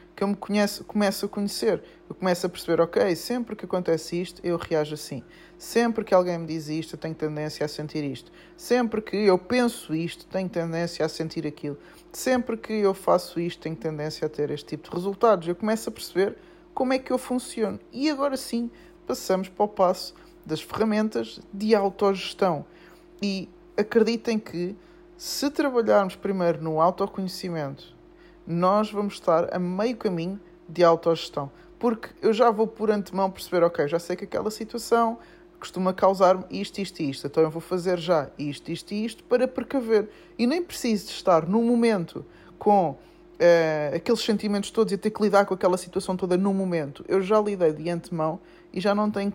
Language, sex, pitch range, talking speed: English, male, 170-215 Hz, 180 wpm